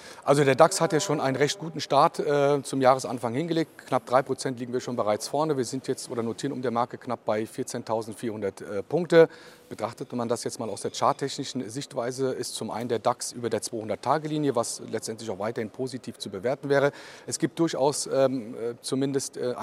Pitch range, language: 120-145 Hz, German